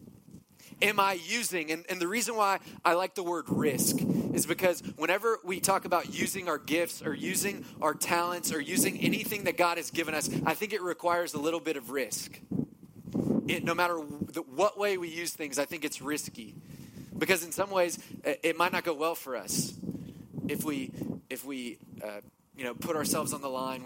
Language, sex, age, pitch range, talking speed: English, male, 30-49, 155-185 Hz, 200 wpm